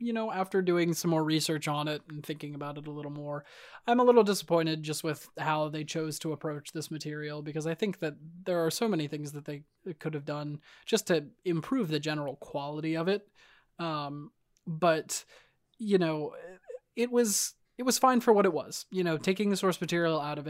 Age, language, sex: 20-39, English, male